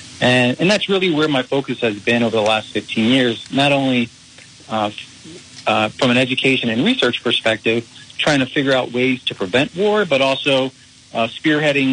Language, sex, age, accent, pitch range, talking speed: English, male, 40-59, American, 115-135 Hz, 180 wpm